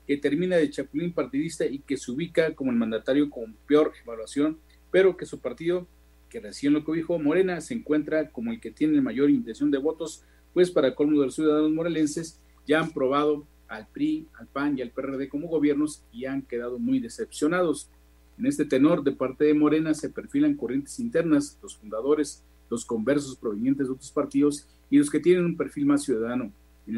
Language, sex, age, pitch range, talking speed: Spanish, male, 40-59, 125-165 Hz, 195 wpm